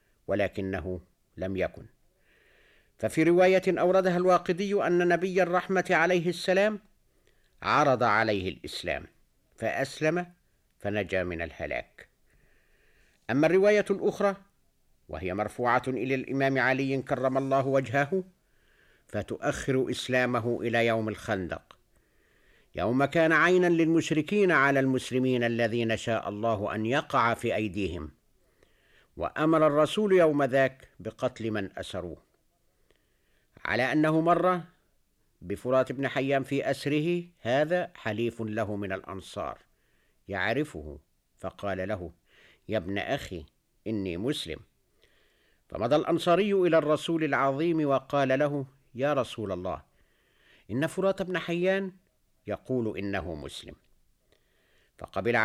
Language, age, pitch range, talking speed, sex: Arabic, 50-69, 110-165 Hz, 100 wpm, male